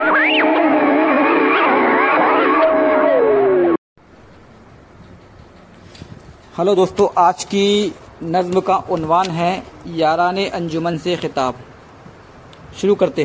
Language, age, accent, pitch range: Hindi, 50-69, native, 140-180 Hz